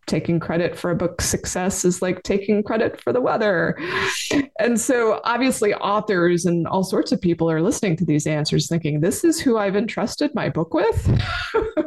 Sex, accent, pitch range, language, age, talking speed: female, American, 160-225 Hz, English, 20-39, 180 wpm